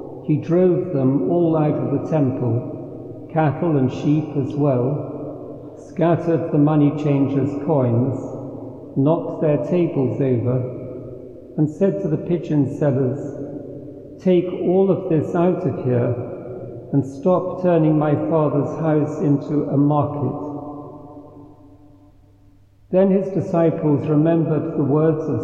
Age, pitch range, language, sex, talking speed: 60-79, 135-155 Hz, English, male, 120 wpm